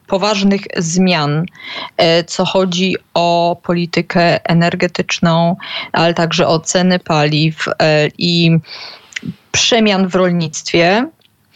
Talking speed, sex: 85 wpm, female